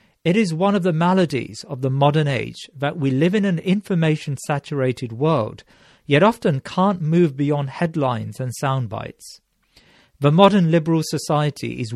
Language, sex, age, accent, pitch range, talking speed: English, male, 40-59, British, 130-170 Hz, 150 wpm